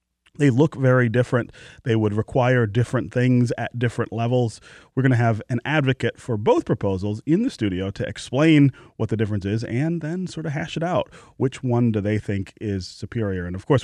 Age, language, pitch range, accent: 30-49, English, 100-135 Hz, American